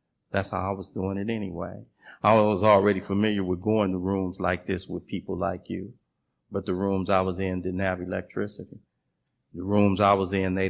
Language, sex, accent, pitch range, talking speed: English, male, American, 90-100 Hz, 200 wpm